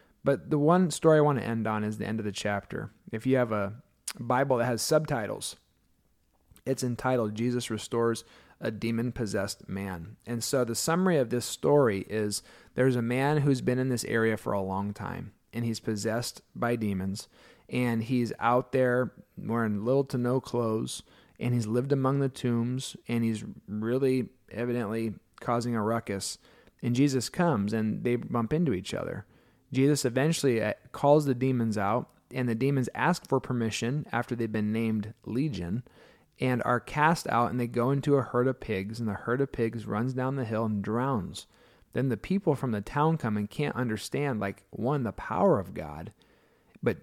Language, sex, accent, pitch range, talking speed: English, male, American, 110-135 Hz, 180 wpm